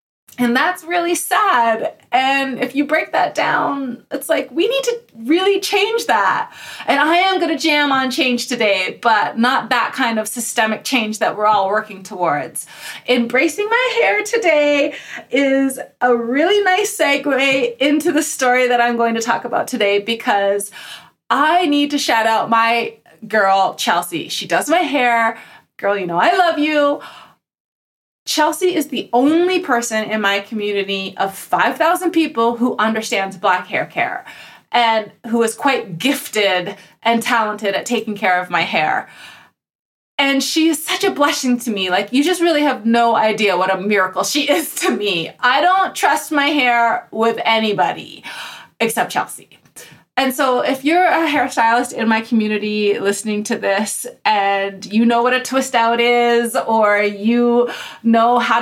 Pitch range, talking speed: 220-300 Hz, 165 wpm